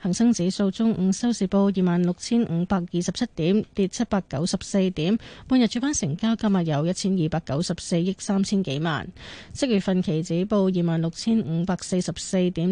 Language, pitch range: Chinese, 170-215 Hz